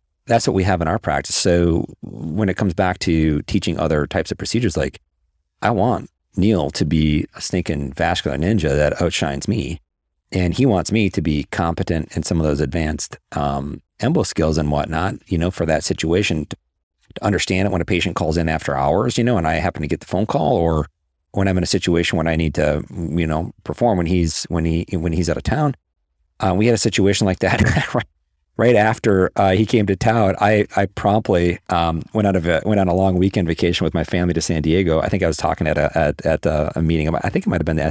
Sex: male